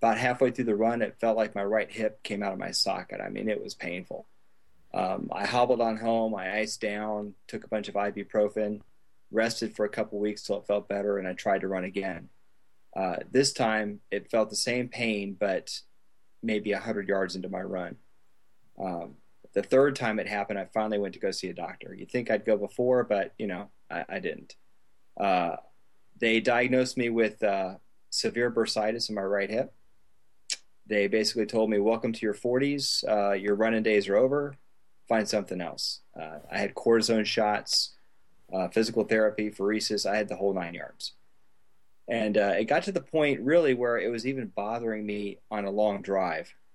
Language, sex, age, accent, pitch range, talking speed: English, male, 30-49, American, 95-115 Hz, 195 wpm